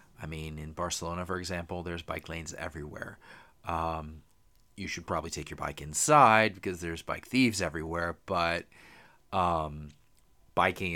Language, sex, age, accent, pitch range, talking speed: English, male, 30-49, American, 80-95 Hz, 140 wpm